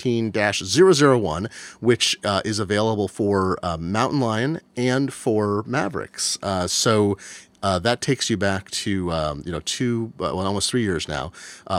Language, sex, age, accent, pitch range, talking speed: English, male, 40-59, American, 90-120 Hz, 160 wpm